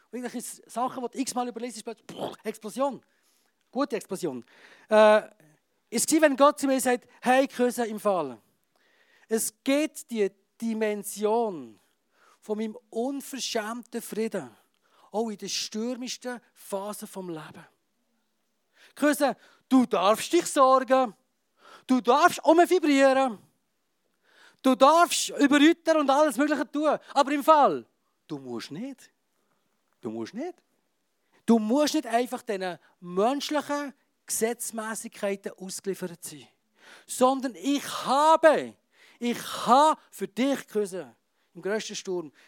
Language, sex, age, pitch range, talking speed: German, male, 40-59, 190-270 Hz, 115 wpm